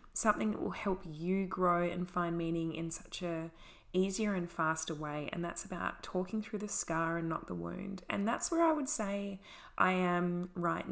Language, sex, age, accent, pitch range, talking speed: English, female, 20-39, Australian, 180-210 Hz, 200 wpm